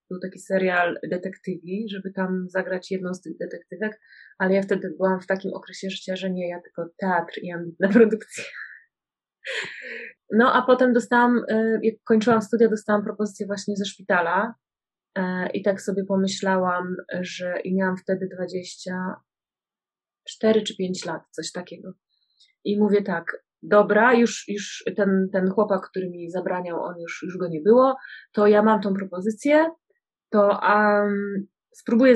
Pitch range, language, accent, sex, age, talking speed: 185-215 Hz, English, Polish, female, 20-39, 145 wpm